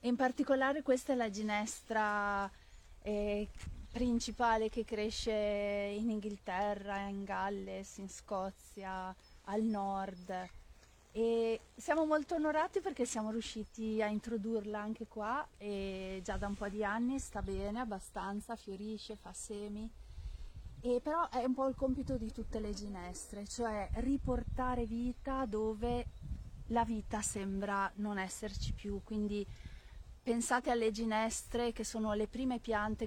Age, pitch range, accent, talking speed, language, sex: 30-49, 200-240 Hz, native, 130 wpm, Italian, female